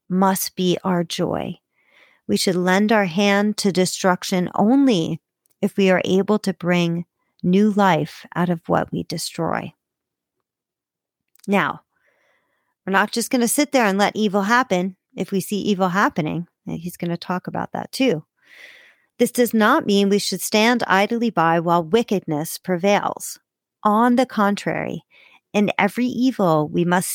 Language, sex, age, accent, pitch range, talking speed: English, female, 40-59, American, 175-225 Hz, 155 wpm